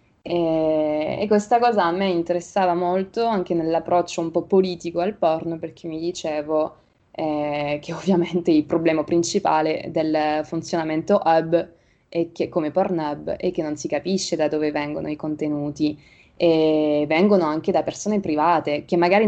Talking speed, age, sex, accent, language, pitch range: 155 wpm, 20-39, female, native, Italian, 155-185 Hz